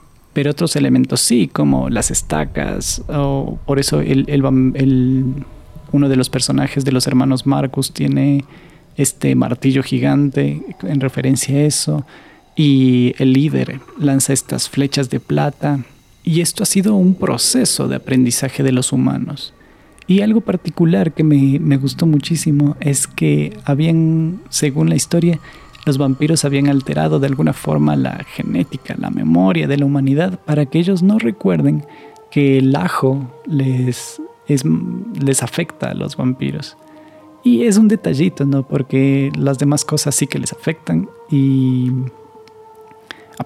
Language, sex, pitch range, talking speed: Spanish, male, 130-160 Hz, 140 wpm